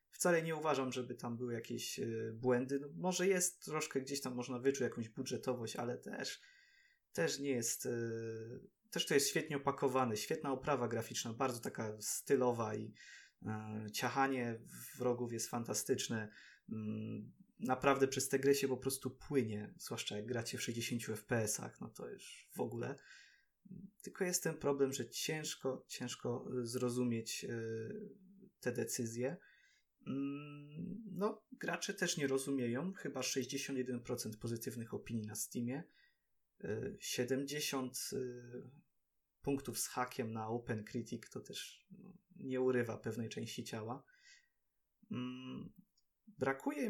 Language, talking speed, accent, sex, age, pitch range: Polish, 125 wpm, native, male, 20-39, 120-155 Hz